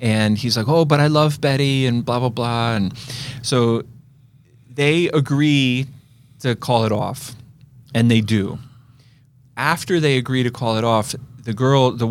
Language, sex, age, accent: English, male, 30-49, American